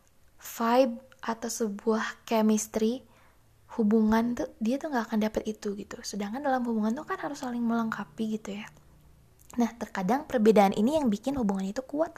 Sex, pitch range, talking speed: female, 210-255 Hz, 160 wpm